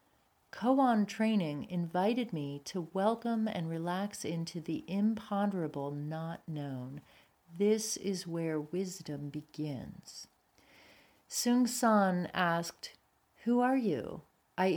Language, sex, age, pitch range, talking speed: English, female, 40-59, 165-210 Hz, 100 wpm